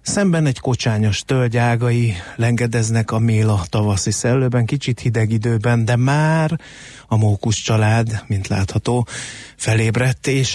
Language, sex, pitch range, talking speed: Hungarian, male, 105-125 Hz, 125 wpm